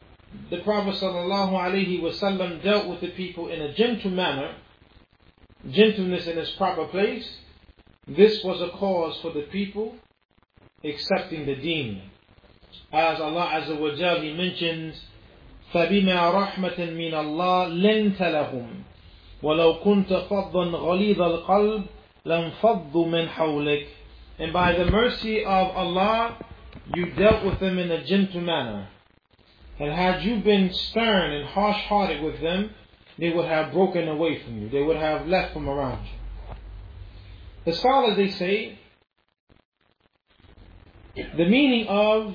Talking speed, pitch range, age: 130 wpm, 155-200 Hz, 40-59